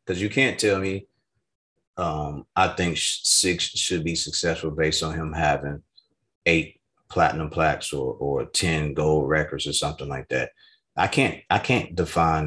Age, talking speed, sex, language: 30-49, 160 wpm, male, English